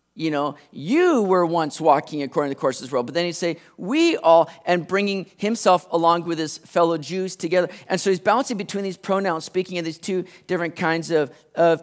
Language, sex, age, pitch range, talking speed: English, male, 40-59, 160-195 Hz, 220 wpm